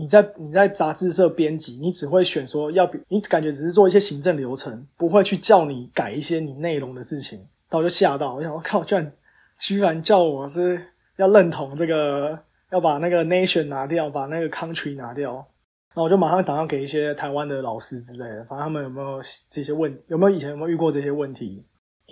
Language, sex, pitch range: Chinese, male, 145-180 Hz